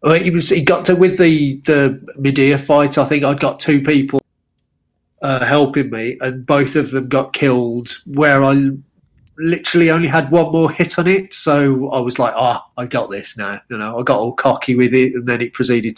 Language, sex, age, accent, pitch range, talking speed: English, male, 40-59, British, 125-155 Hz, 215 wpm